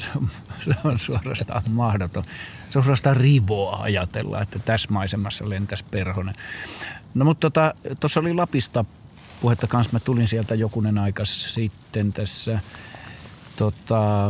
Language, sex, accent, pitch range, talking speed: Finnish, male, native, 100-120 Hz, 125 wpm